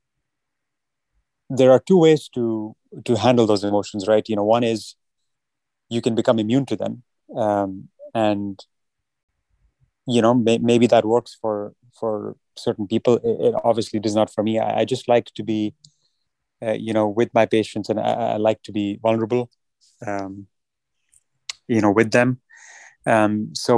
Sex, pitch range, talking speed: male, 105-120 Hz, 165 wpm